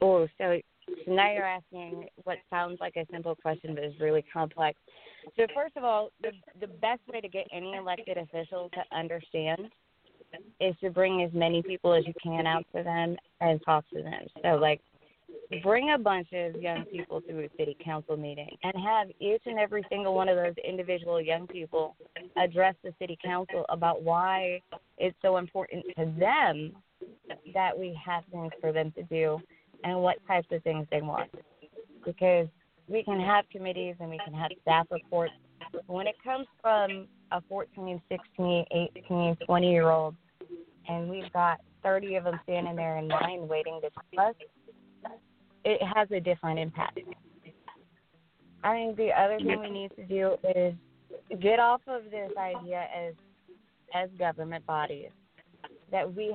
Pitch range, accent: 165-195 Hz, American